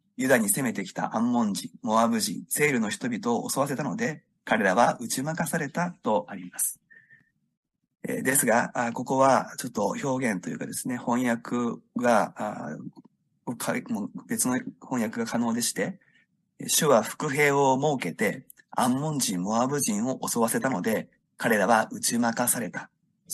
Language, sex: Japanese, male